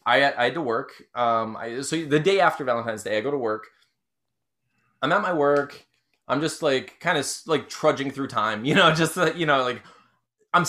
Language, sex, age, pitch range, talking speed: English, male, 20-39, 125-185 Hz, 200 wpm